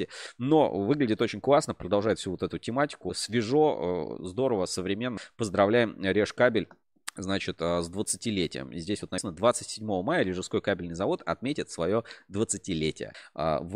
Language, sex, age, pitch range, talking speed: Russian, male, 20-39, 90-120 Hz, 135 wpm